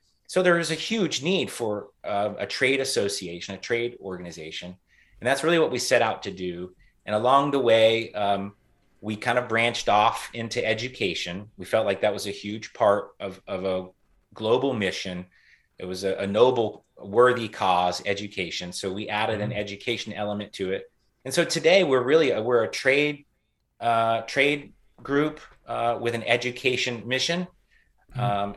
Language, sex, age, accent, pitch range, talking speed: English, male, 30-49, American, 95-125 Hz, 170 wpm